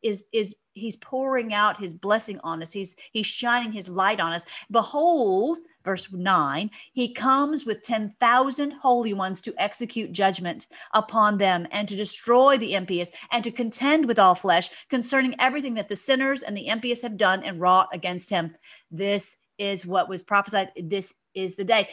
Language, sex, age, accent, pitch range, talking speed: English, female, 40-59, American, 190-240 Hz, 175 wpm